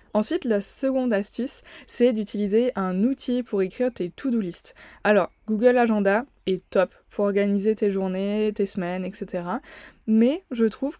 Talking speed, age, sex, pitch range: 155 wpm, 20-39, female, 195-230 Hz